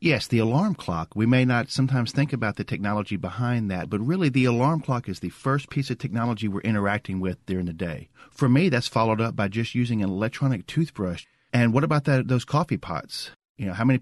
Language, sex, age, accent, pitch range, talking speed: English, male, 40-59, American, 95-120 Hz, 225 wpm